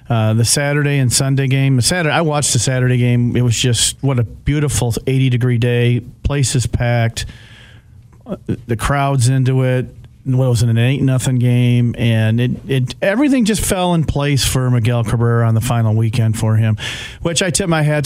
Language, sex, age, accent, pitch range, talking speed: English, male, 40-59, American, 120-145 Hz, 185 wpm